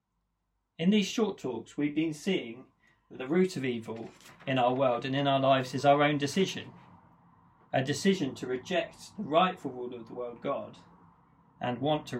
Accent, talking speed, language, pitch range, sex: British, 180 wpm, English, 120-150 Hz, male